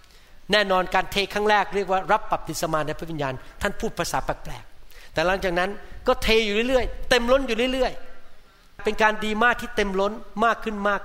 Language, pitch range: Thai, 150-205 Hz